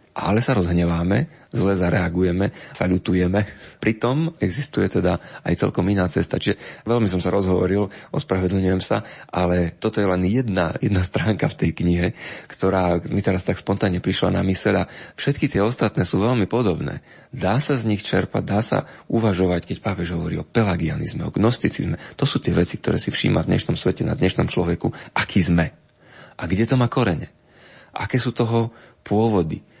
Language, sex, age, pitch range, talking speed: Slovak, male, 30-49, 90-110 Hz, 165 wpm